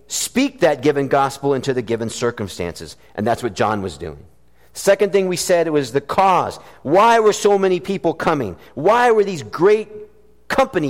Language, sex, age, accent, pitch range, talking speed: English, male, 50-69, American, 105-175 Hz, 175 wpm